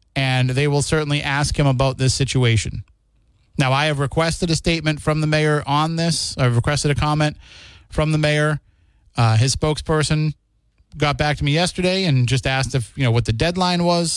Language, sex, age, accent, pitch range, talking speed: English, male, 30-49, American, 125-150 Hz, 190 wpm